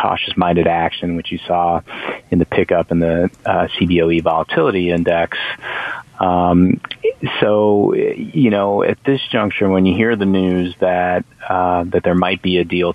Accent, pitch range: American, 85-95 Hz